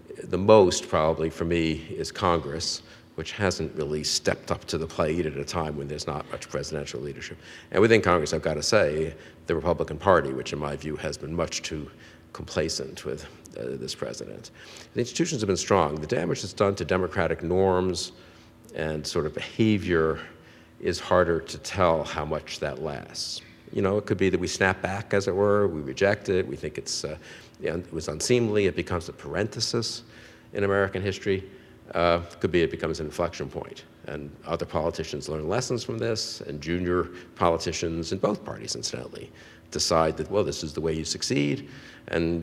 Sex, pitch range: male, 80-100 Hz